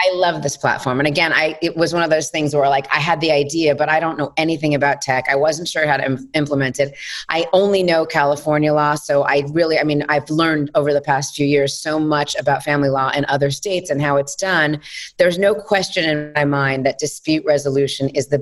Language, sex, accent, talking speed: English, female, American, 240 wpm